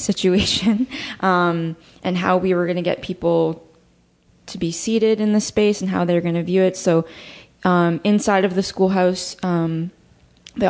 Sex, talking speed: female, 175 wpm